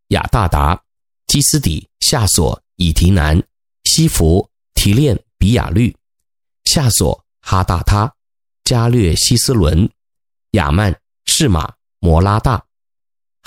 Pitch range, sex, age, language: 90-135 Hz, male, 30-49, Chinese